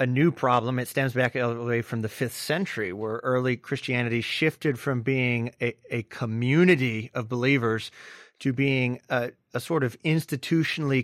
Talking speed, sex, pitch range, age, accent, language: 170 wpm, male, 120-140 Hz, 30-49, American, English